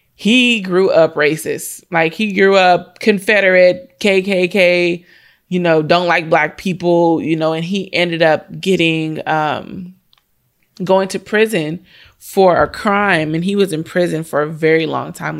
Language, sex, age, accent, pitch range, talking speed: English, female, 20-39, American, 170-215 Hz, 155 wpm